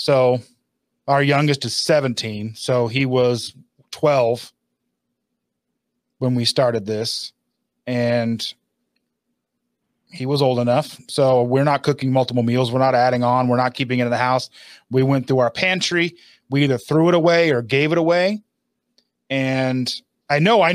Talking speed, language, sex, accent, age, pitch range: 155 wpm, English, male, American, 30-49, 125-155 Hz